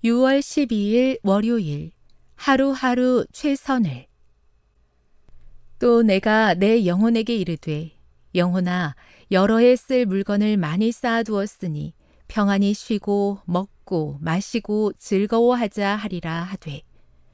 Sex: female